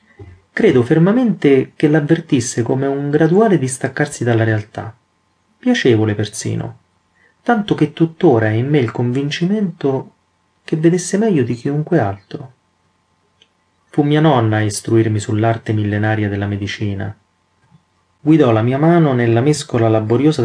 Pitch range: 105-140 Hz